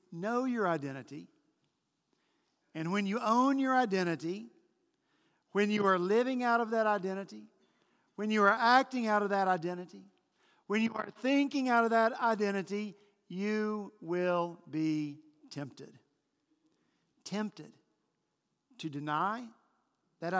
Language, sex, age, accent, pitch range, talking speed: English, male, 50-69, American, 170-240 Hz, 120 wpm